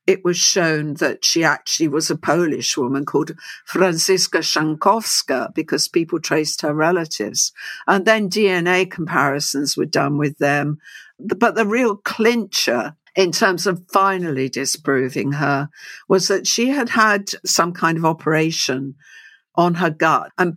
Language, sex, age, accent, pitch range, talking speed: English, female, 60-79, British, 150-195 Hz, 145 wpm